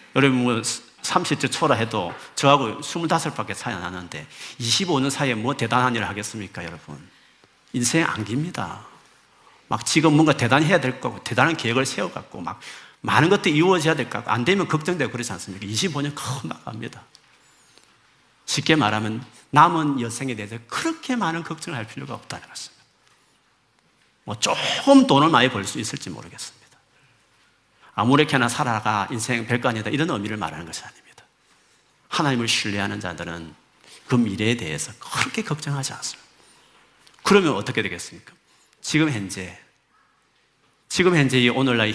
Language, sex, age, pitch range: Korean, male, 40-59, 110-150 Hz